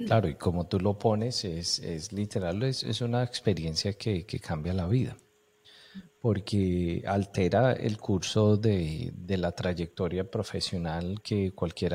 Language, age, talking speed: English, 40-59, 145 wpm